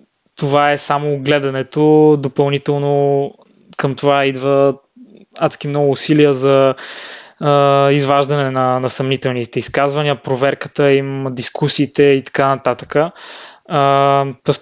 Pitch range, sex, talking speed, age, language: 140-150 Hz, male, 105 wpm, 20-39, Bulgarian